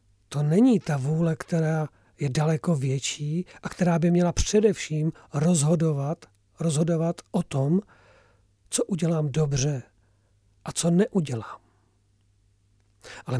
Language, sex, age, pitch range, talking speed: Czech, male, 40-59, 110-175 Hz, 105 wpm